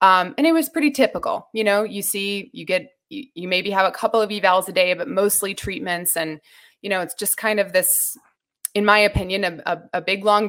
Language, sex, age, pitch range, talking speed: English, female, 20-39, 185-230 Hz, 230 wpm